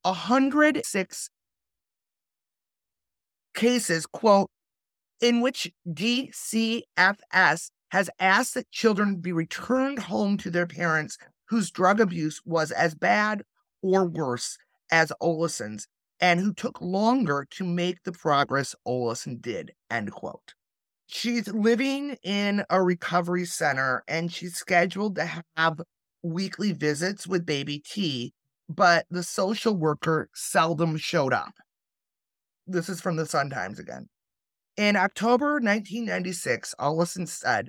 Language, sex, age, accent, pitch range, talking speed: English, male, 30-49, American, 145-200 Hz, 115 wpm